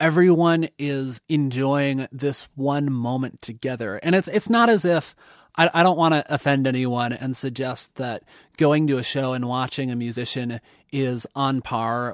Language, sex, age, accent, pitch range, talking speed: English, male, 20-39, American, 125-155 Hz, 170 wpm